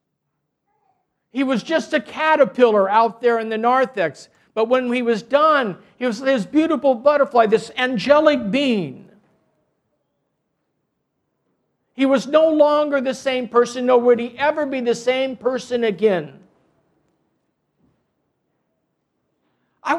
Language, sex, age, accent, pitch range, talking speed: English, male, 50-69, American, 210-275 Hz, 120 wpm